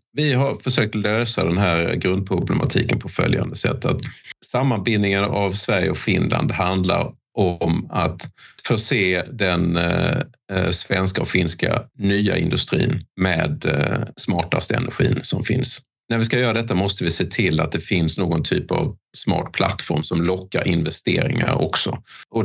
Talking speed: 145 wpm